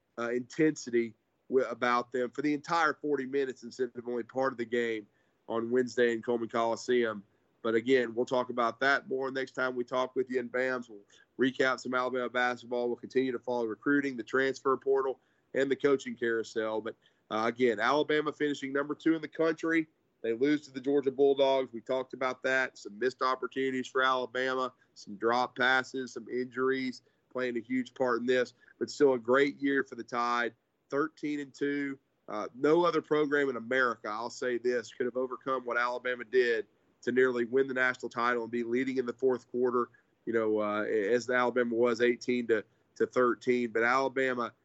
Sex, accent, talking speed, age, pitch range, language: male, American, 185 wpm, 30-49, 120-135 Hz, English